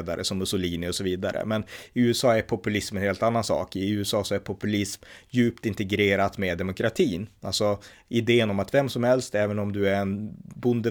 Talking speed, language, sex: 200 wpm, Swedish, male